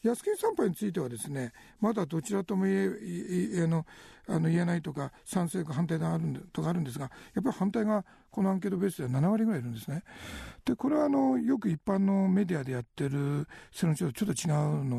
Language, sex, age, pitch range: Japanese, male, 60-79, 145-220 Hz